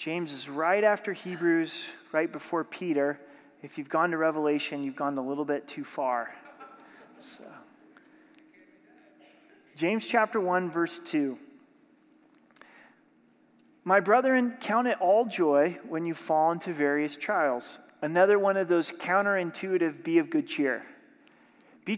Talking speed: 130 wpm